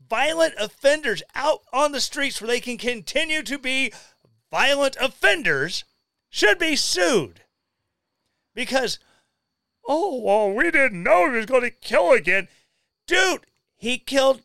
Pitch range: 175-260 Hz